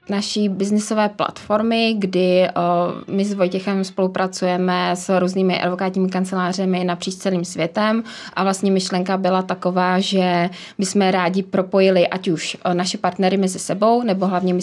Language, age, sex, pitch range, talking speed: Czech, 20-39, female, 180-195 Hz, 150 wpm